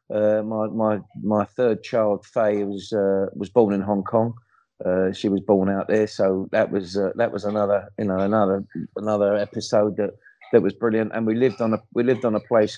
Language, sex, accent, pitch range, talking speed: English, male, British, 95-110 Hz, 215 wpm